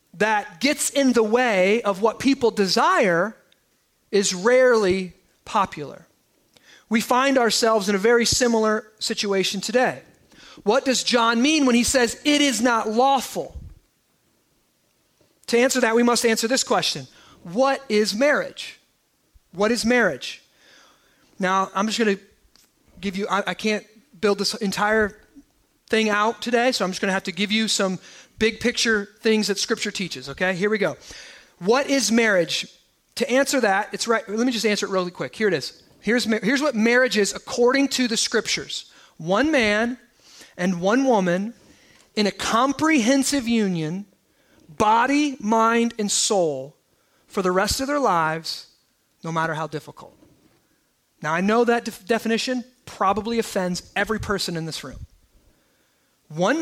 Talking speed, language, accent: 155 wpm, English, American